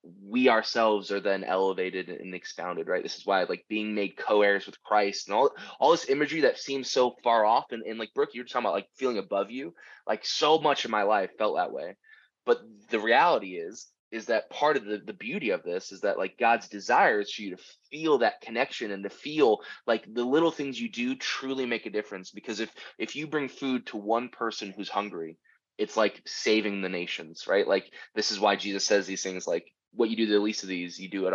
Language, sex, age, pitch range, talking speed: English, male, 20-39, 100-135 Hz, 235 wpm